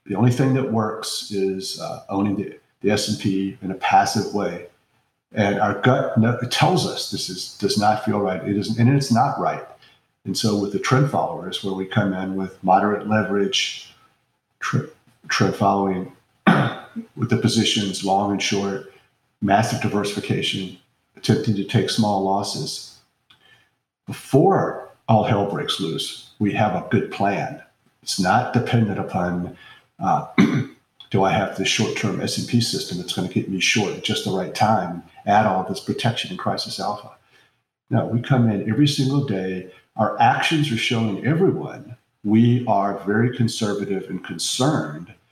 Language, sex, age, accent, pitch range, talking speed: English, male, 50-69, American, 100-120 Hz, 160 wpm